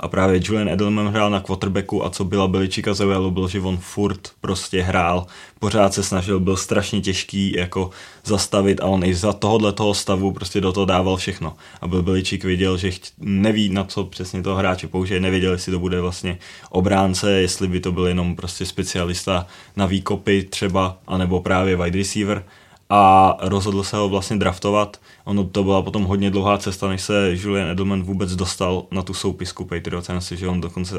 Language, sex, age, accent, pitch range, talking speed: Czech, male, 20-39, native, 90-100 Hz, 185 wpm